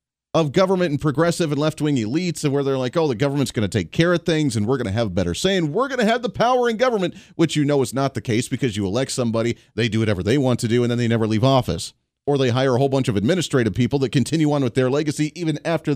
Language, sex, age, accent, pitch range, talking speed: English, male, 40-59, American, 115-160 Hz, 295 wpm